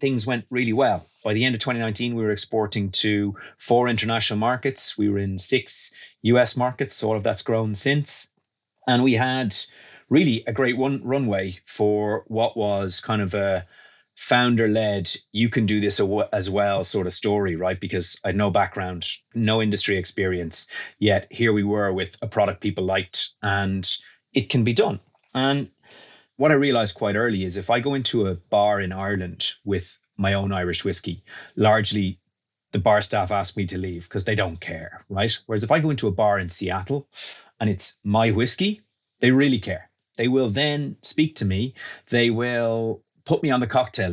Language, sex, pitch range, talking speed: English, male, 100-120 Hz, 185 wpm